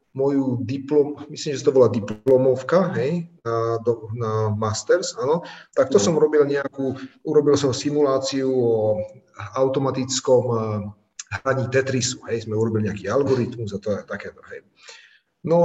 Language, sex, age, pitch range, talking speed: Slovak, male, 30-49, 125-165 Hz, 125 wpm